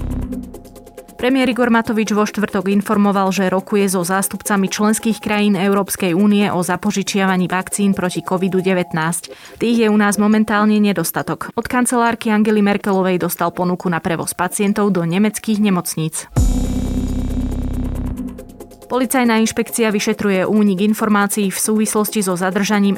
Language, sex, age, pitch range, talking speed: Slovak, female, 20-39, 185-210 Hz, 120 wpm